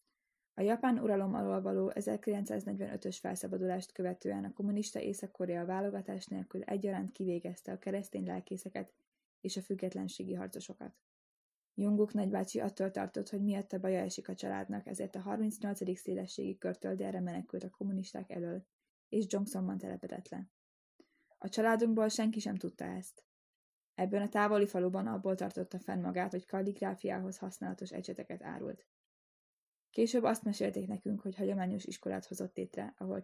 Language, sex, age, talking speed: Hungarian, female, 10-29, 135 wpm